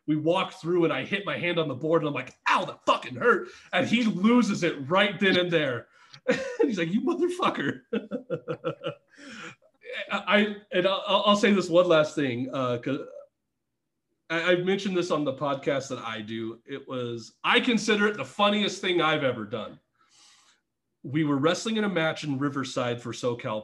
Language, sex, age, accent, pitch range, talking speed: English, male, 30-49, American, 140-195 Hz, 185 wpm